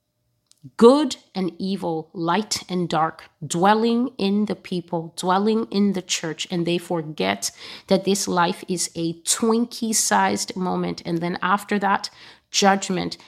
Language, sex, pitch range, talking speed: English, female, 170-200 Hz, 135 wpm